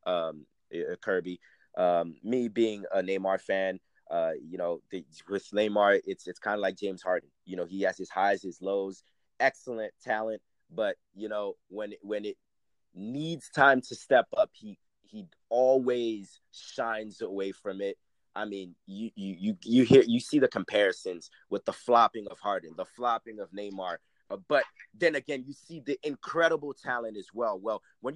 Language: English